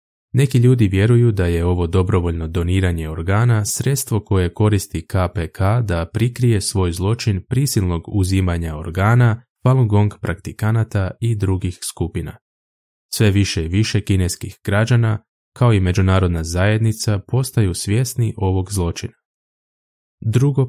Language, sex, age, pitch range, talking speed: Croatian, male, 20-39, 90-115 Hz, 115 wpm